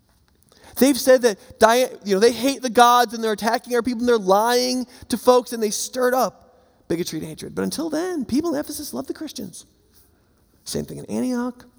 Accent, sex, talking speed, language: American, male, 200 wpm, English